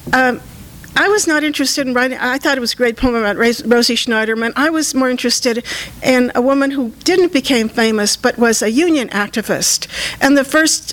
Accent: American